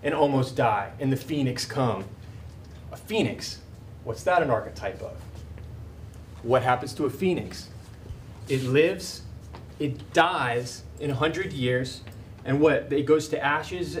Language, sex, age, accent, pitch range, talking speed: English, male, 20-39, American, 105-140 Hz, 140 wpm